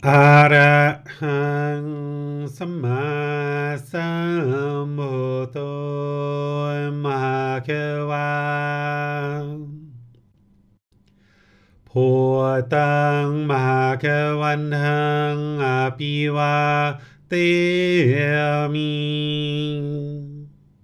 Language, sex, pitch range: English, male, 130-150 Hz